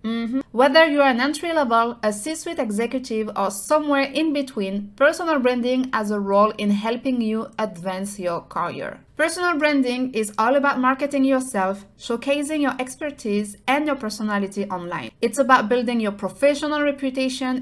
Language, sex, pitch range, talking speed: English, female, 205-275 Hz, 155 wpm